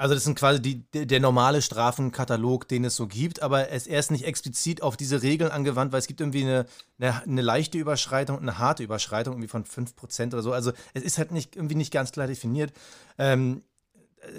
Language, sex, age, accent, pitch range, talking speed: German, male, 30-49, German, 120-150 Hz, 195 wpm